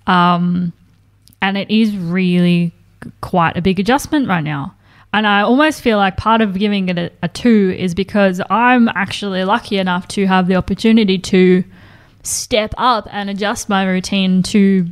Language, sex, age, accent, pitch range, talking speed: English, female, 10-29, Australian, 165-200 Hz, 165 wpm